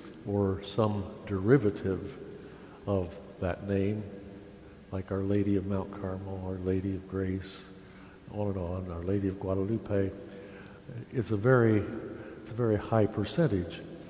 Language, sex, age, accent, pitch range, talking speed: English, male, 60-79, American, 95-110 Hz, 125 wpm